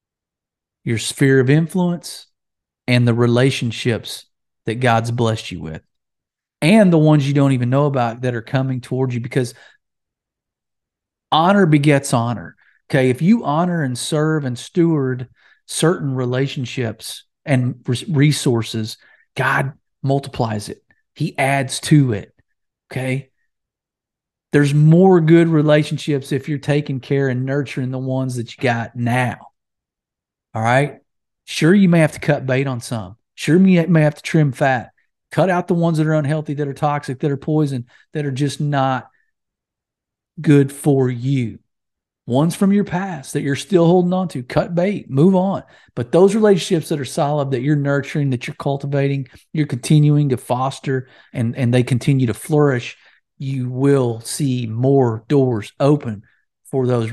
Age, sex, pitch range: 40-59, male, 125-155 Hz